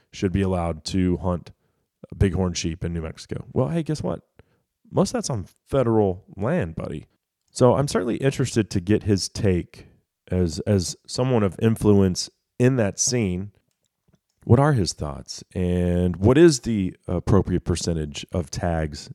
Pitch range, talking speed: 85-110 Hz, 155 wpm